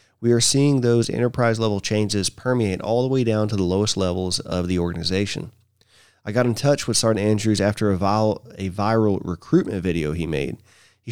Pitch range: 100-125 Hz